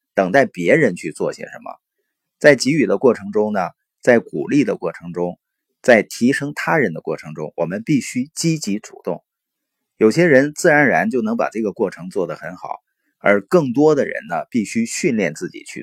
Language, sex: Chinese, male